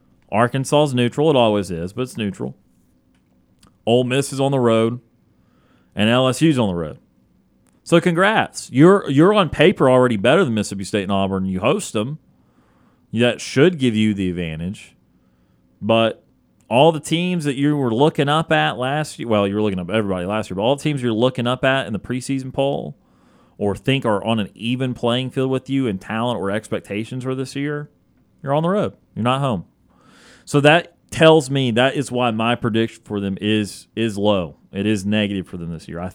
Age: 30-49